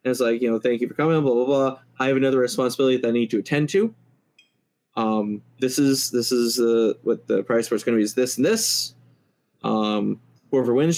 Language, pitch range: English, 120-155 Hz